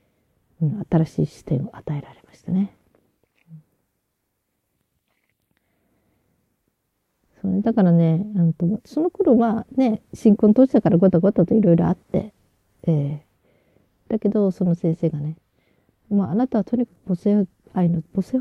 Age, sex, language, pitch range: 40-59, female, Japanese, 150-195 Hz